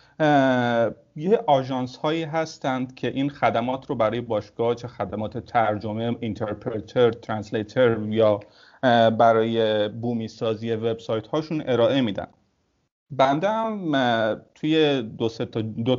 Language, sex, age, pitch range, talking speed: Persian, male, 30-49, 110-130 Hz, 95 wpm